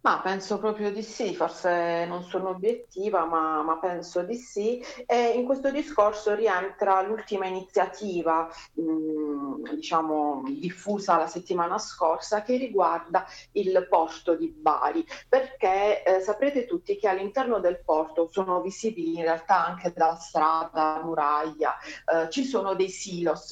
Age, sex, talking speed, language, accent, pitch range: 40-59, female, 140 wpm, Italian, native, 170-225 Hz